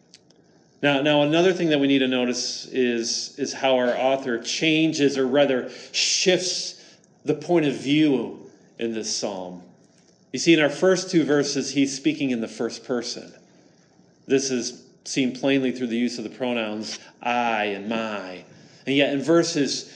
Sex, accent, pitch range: male, American, 125-160 Hz